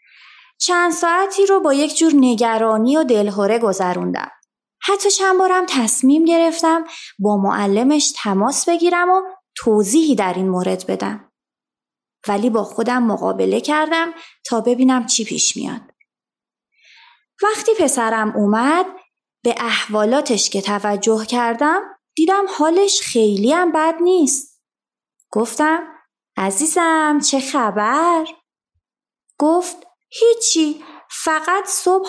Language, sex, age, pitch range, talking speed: Persian, female, 20-39, 215-345 Hz, 105 wpm